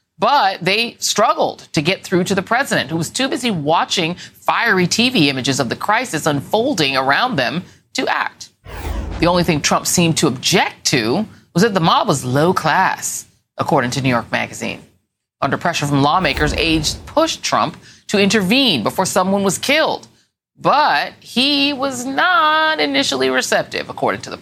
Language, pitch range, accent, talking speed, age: English, 160-230 Hz, American, 165 wpm, 40-59